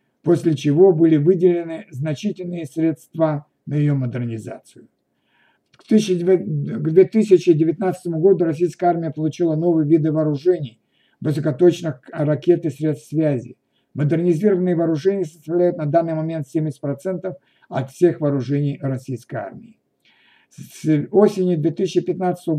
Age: 60-79